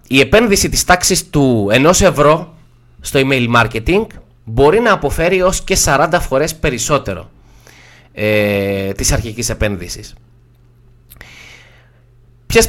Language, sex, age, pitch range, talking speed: Greek, male, 20-39, 120-170 Hz, 110 wpm